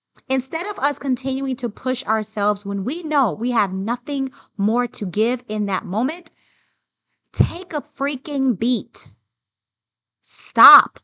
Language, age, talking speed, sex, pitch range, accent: English, 30-49, 130 wpm, female, 205-270 Hz, American